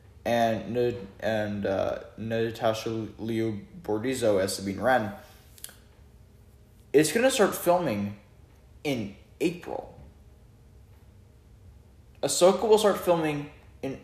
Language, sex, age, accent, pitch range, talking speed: English, male, 10-29, American, 110-155 Hz, 85 wpm